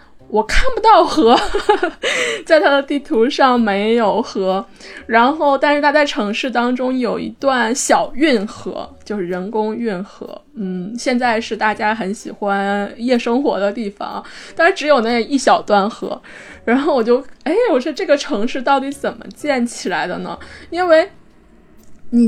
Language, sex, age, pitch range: Chinese, female, 20-39, 210-285 Hz